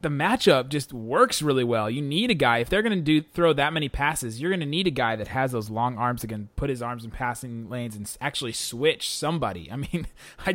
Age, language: 30-49, English